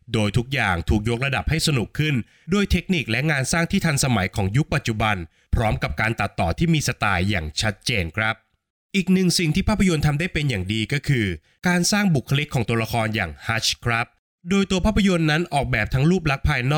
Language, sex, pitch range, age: Thai, male, 105-145 Hz, 20-39